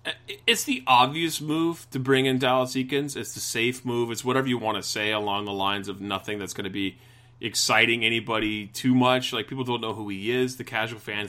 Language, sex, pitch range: English, male, 105-125 Hz